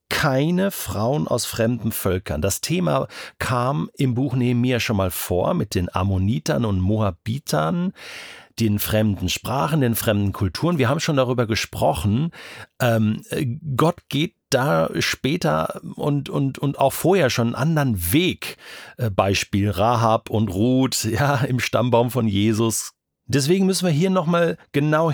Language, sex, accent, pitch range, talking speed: German, male, German, 100-140 Hz, 140 wpm